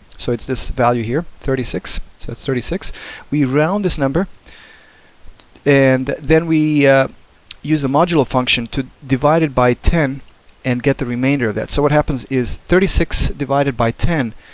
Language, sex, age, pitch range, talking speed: English, male, 30-49, 115-145 Hz, 165 wpm